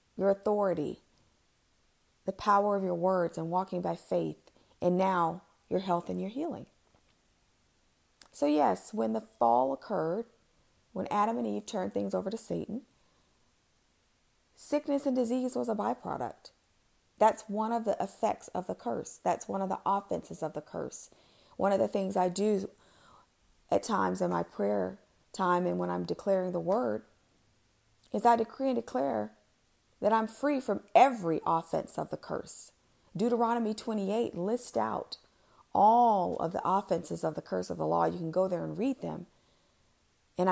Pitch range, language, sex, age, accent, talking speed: 145-235 Hz, English, female, 40-59, American, 160 wpm